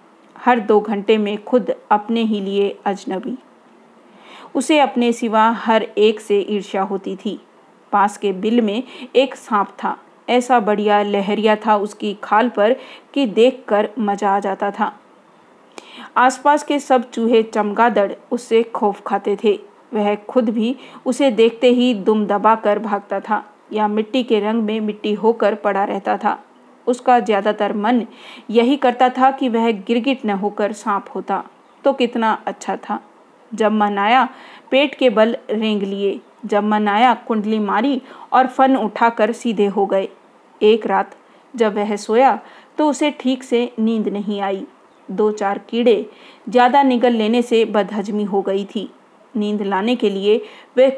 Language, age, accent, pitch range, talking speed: Hindi, 40-59, native, 205-245 Hz, 155 wpm